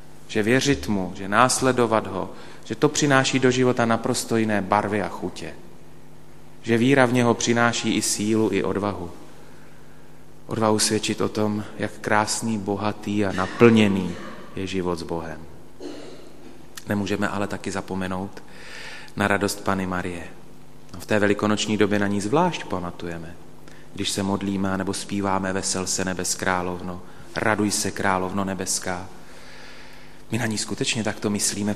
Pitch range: 95-120 Hz